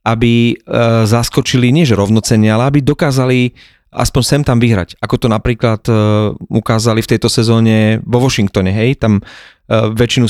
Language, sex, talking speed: Slovak, male, 140 wpm